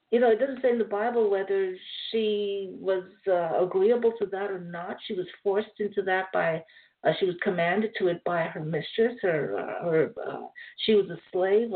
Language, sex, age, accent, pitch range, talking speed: English, female, 50-69, American, 190-255 Hz, 195 wpm